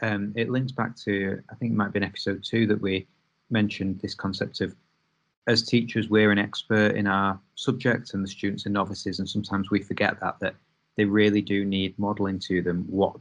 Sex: male